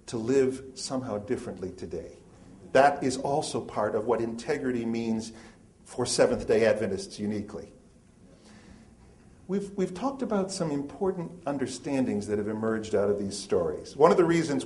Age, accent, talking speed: 50-69, American, 145 wpm